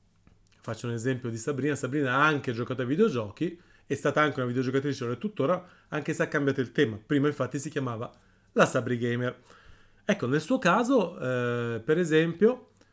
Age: 30-49